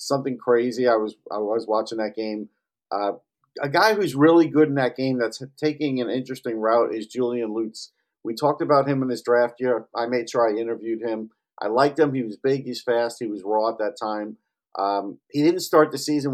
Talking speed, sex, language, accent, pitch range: 220 wpm, male, English, American, 110-135 Hz